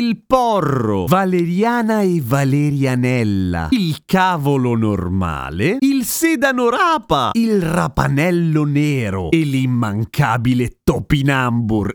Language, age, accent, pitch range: Italian, 30-49, native, 115-170 Hz